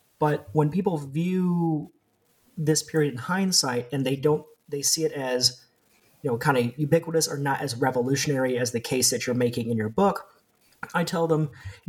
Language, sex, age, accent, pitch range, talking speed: English, male, 30-49, American, 125-155 Hz, 185 wpm